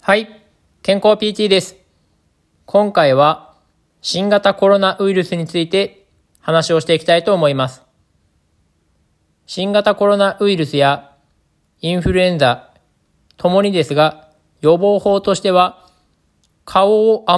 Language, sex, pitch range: Japanese, male, 140-195 Hz